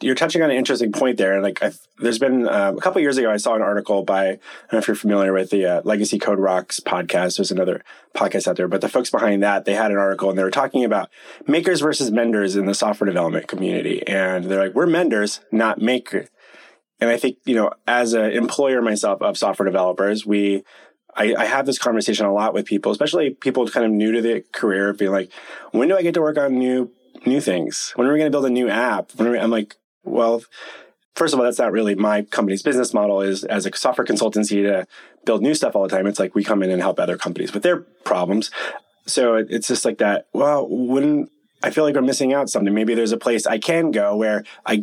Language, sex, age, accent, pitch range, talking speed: English, male, 20-39, American, 100-125 Hz, 245 wpm